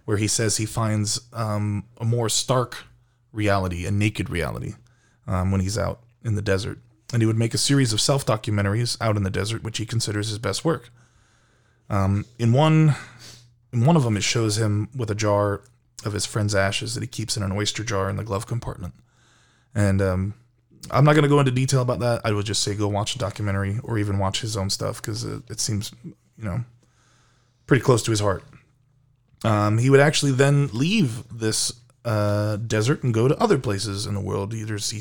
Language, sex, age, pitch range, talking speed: English, male, 20-39, 105-125 Hz, 205 wpm